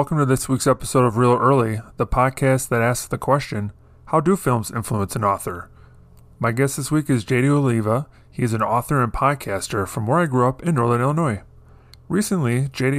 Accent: American